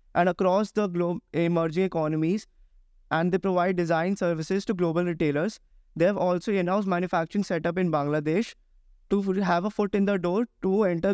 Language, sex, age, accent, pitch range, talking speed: Hindi, male, 20-39, native, 175-200 Hz, 165 wpm